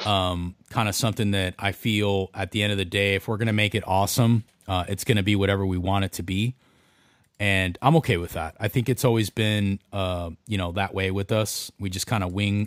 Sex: male